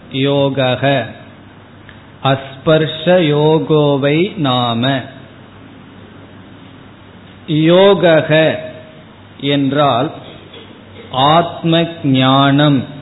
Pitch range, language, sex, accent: 130-160 Hz, Tamil, male, native